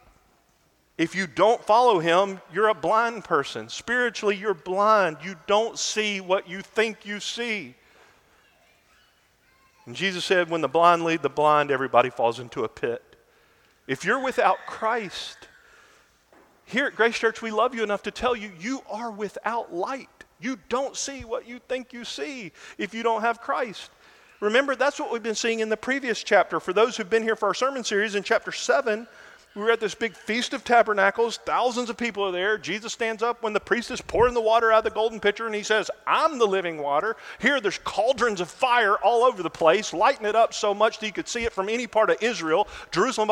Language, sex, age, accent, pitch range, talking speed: English, male, 40-59, American, 195-245 Hz, 205 wpm